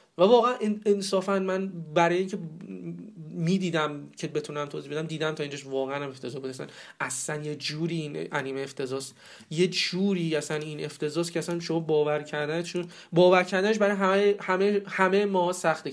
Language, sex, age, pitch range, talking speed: Persian, male, 30-49, 160-195 Hz, 170 wpm